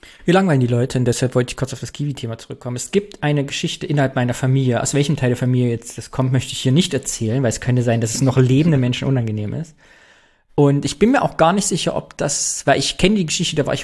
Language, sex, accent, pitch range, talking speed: German, male, German, 125-160 Hz, 270 wpm